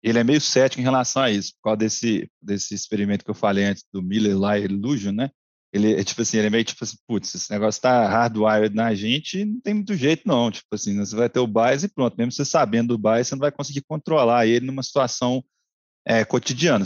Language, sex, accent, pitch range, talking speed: Portuguese, male, Brazilian, 110-130 Hz, 230 wpm